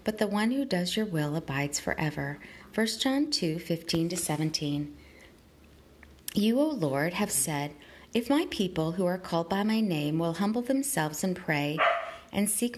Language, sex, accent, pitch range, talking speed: English, female, American, 155-225 Hz, 160 wpm